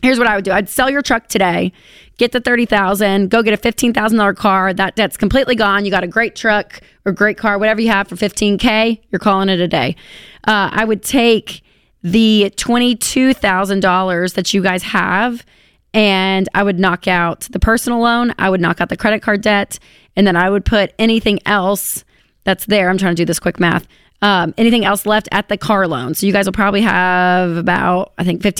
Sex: female